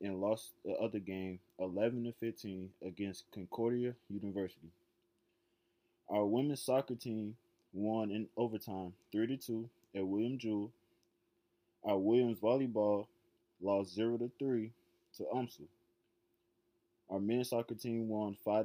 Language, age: English, 20-39